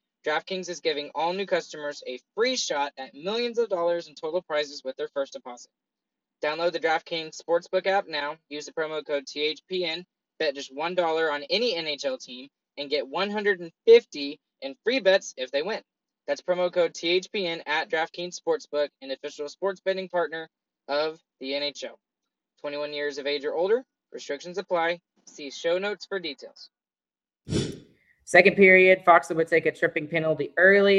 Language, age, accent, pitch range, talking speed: English, 20-39, American, 150-185 Hz, 165 wpm